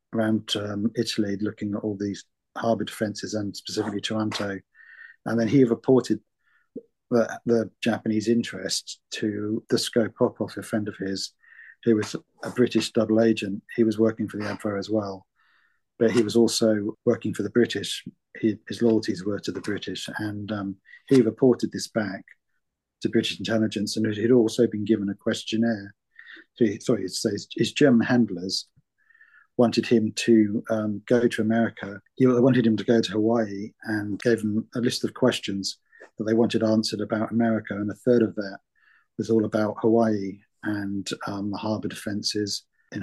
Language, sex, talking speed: English, male, 175 wpm